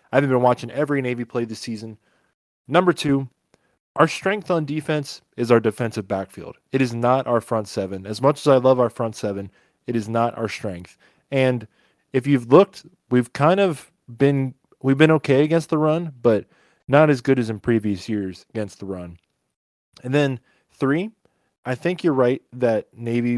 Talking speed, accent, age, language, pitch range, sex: 180 wpm, American, 20-39, English, 110-135 Hz, male